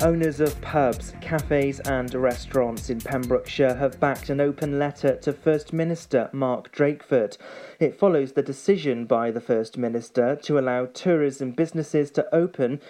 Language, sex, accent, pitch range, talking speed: English, male, British, 125-150 Hz, 150 wpm